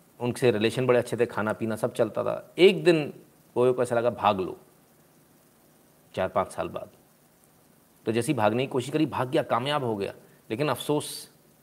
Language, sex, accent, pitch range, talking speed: Hindi, male, native, 120-160 Hz, 180 wpm